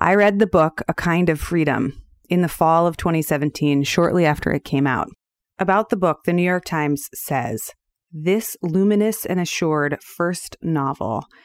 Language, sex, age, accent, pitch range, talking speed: English, female, 30-49, American, 150-195 Hz, 170 wpm